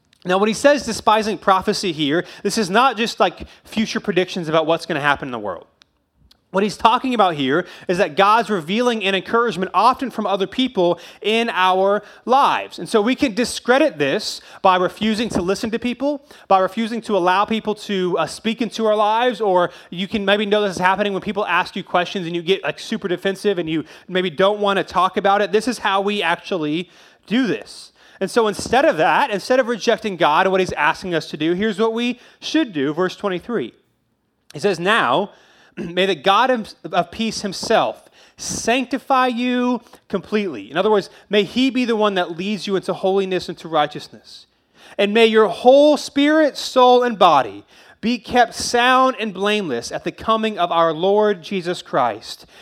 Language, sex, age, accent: English, male, 30-49, American